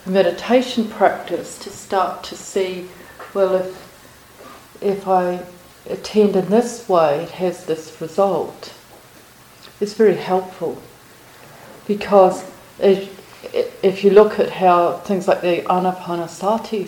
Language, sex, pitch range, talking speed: English, female, 175-205 Hz, 115 wpm